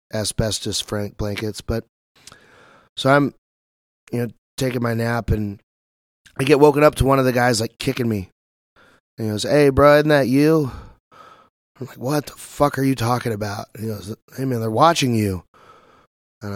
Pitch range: 110-130 Hz